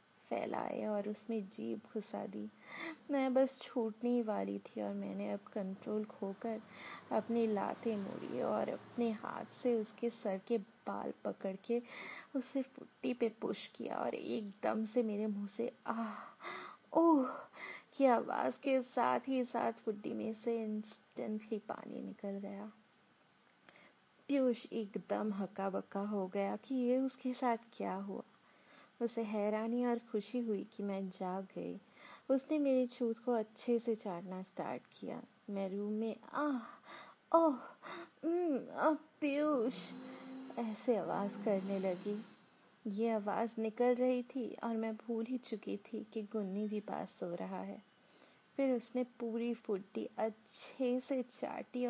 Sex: female